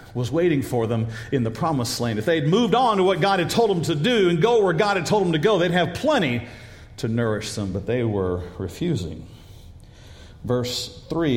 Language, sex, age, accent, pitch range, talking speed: English, male, 50-69, American, 110-165 Hz, 220 wpm